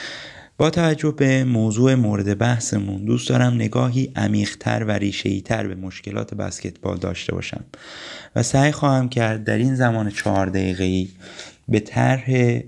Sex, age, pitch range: male, 30-49, 105-135 Hz